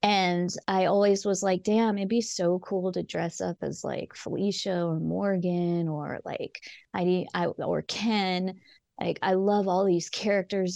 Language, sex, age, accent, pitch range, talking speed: English, female, 20-39, American, 180-205 Hz, 165 wpm